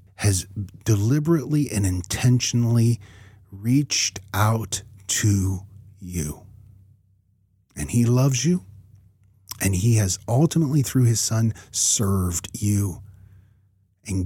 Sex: male